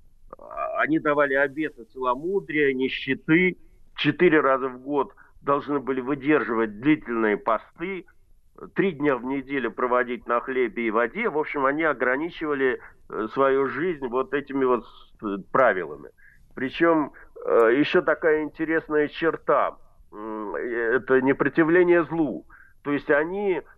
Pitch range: 130-180 Hz